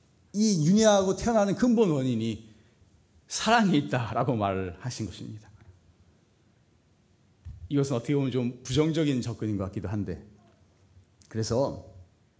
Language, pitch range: Korean, 100-165 Hz